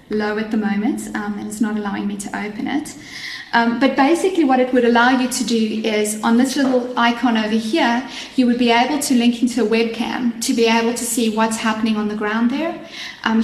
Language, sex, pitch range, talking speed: English, female, 220-250 Hz, 230 wpm